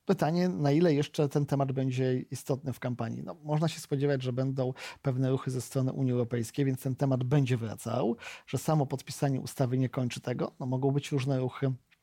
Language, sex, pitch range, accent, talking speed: Polish, male, 130-150 Hz, native, 195 wpm